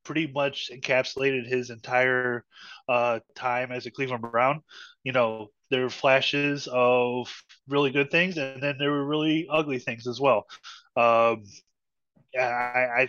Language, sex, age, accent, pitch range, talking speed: English, male, 20-39, American, 120-140 Hz, 145 wpm